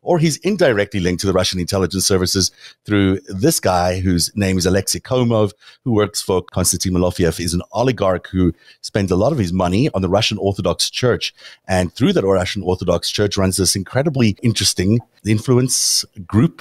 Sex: male